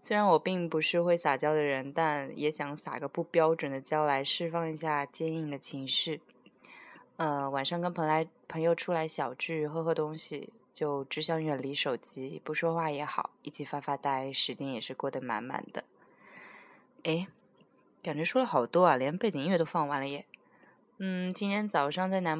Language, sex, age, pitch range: Chinese, female, 20-39, 145-180 Hz